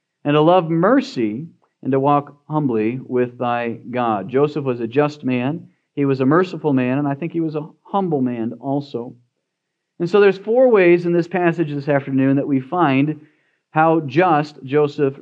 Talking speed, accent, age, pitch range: 180 wpm, American, 40-59, 135-180 Hz